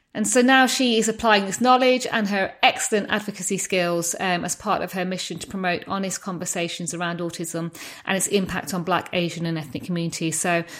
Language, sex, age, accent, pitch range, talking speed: English, female, 30-49, British, 175-215 Hz, 195 wpm